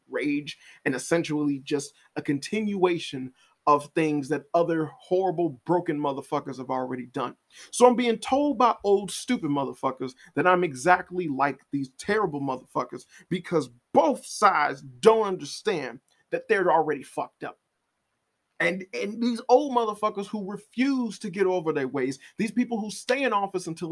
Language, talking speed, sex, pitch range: English, 150 wpm, male, 145-195 Hz